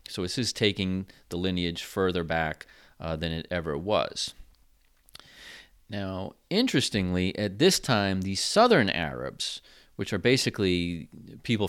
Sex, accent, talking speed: male, American, 130 wpm